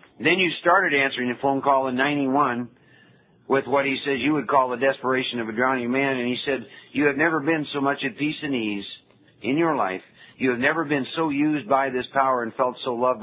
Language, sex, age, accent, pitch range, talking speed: English, male, 50-69, American, 120-145 Hz, 230 wpm